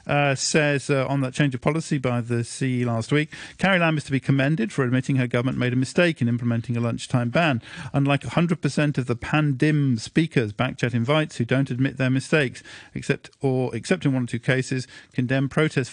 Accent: British